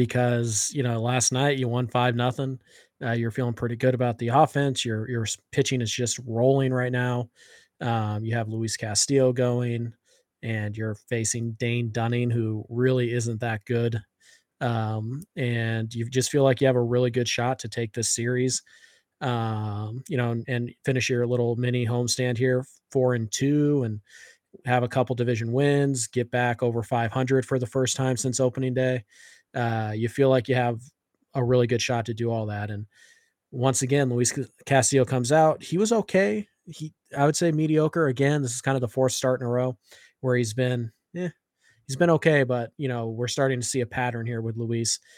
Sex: male